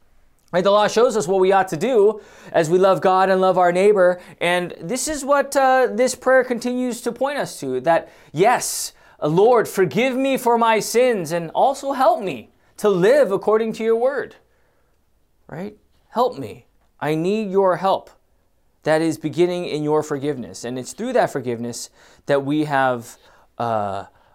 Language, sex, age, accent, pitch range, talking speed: English, male, 20-39, American, 145-225 Hz, 170 wpm